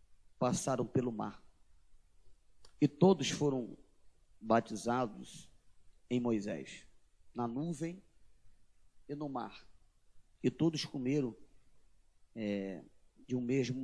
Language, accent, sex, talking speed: Portuguese, Brazilian, male, 85 wpm